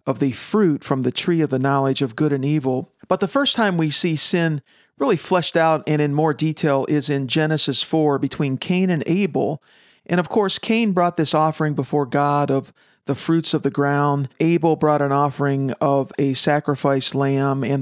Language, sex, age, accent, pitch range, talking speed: English, male, 50-69, American, 140-180 Hz, 200 wpm